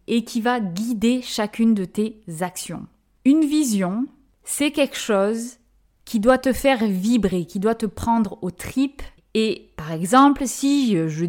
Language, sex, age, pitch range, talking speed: French, female, 20-39, 190-255 Hz, 155 wpm